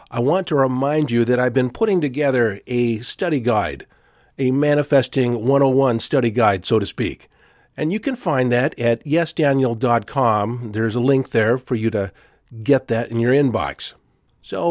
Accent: American